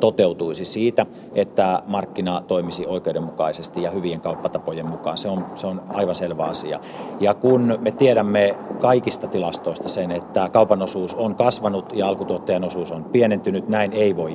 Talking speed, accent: 150 wpm, native